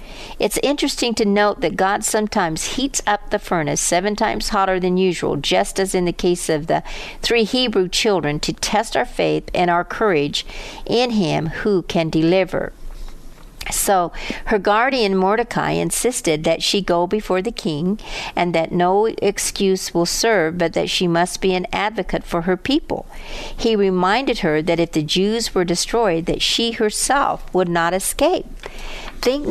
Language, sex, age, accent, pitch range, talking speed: English, female, 60-79, American, 170-215 Hz, 165 wpm